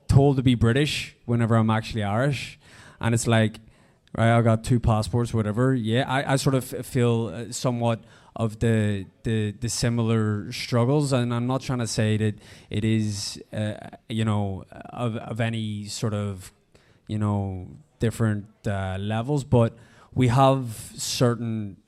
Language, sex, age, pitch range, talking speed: English, male, 20-39, 110-125 Hz, 155 wpm